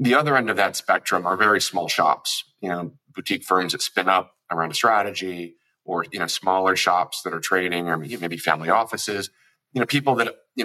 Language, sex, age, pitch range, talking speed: English, male, 30-49, 85-100 Hz, 210 wpm